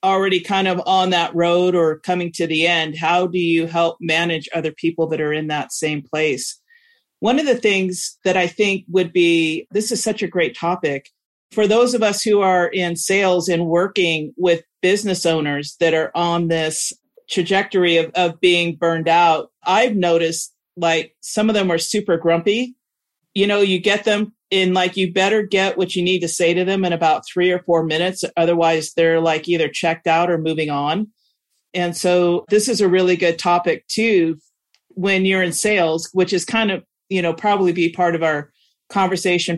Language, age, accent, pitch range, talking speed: English, 40-59, American, 165-195 Hz, 195 wpm